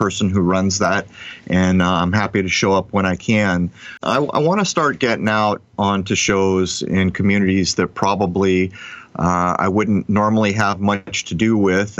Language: English